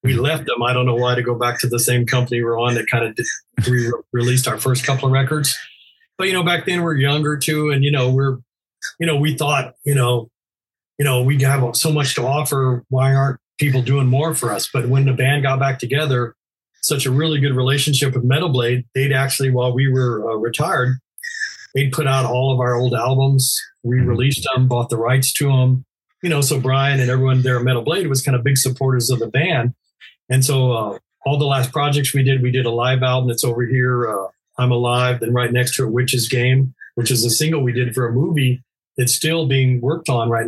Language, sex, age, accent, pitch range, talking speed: English, male, 40-59, American, 125-140 Hz, 230 wpm